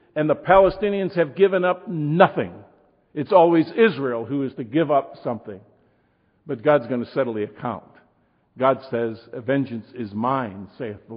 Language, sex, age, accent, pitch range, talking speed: English, male, 50-69, American, 120-175 Hz, 160 wpm